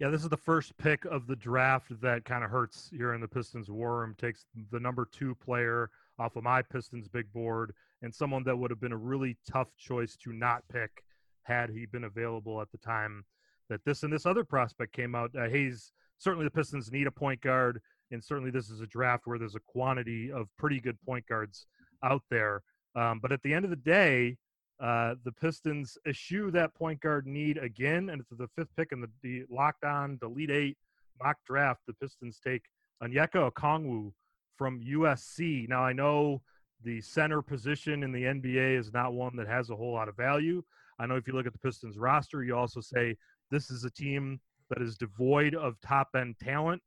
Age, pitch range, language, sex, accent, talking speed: 30-49, 120-140 Hz, English, male, American, 205 wpm